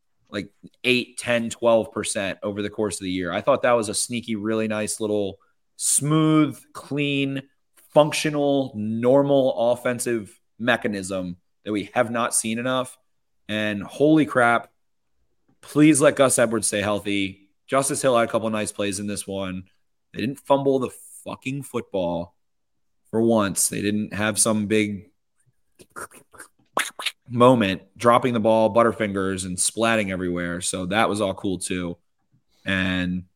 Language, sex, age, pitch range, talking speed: English, male, 30-49, 105-135 Hz, 140 wpm